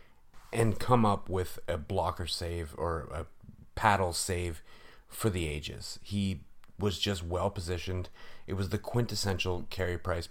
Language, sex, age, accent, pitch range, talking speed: English, male, 30-49, American, 85-100 Hz, 145 wpm